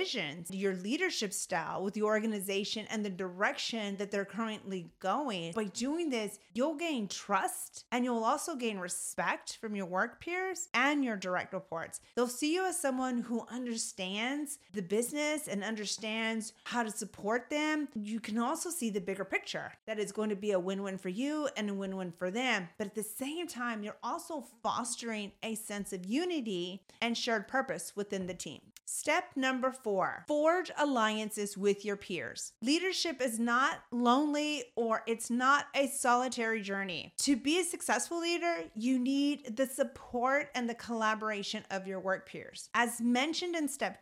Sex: female